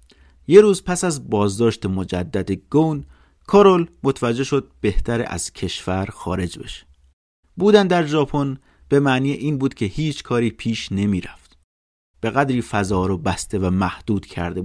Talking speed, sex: 150 wpm, male